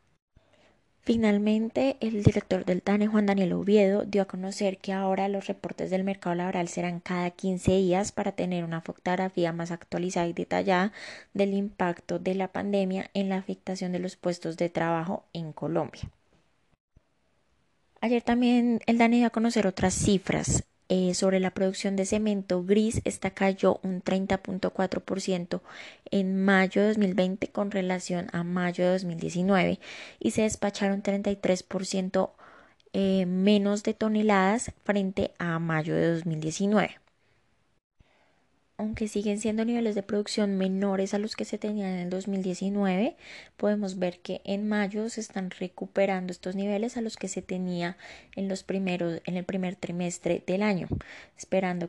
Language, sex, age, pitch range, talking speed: Spanish, female, 20-39, 180-205 Hz, 150 wpm